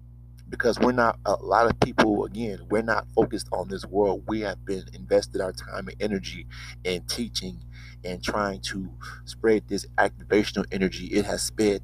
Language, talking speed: English, 170 wpm